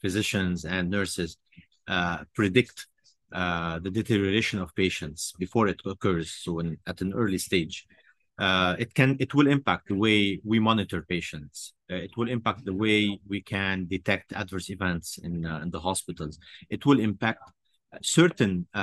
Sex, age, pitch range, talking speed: male, 30-49, 90-110 Hz, 160 wpm